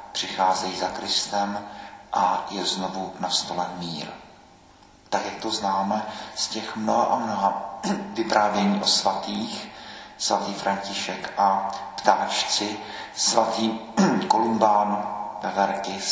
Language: Czech